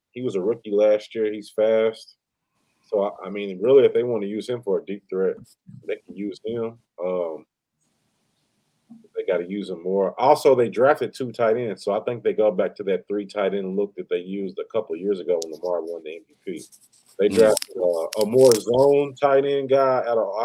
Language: English